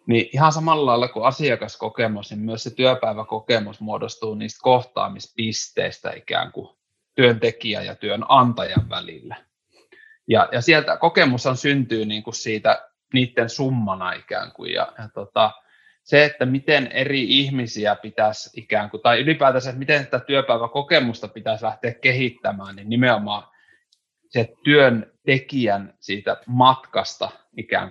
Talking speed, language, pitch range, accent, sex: 130 wpm, Finnish, 110-135 Hz, native, male